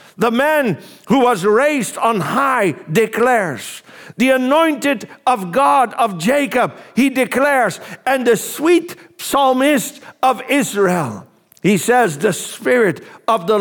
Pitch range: 190-250 Hz